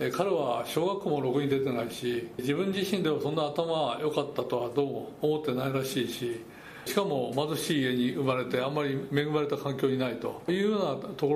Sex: male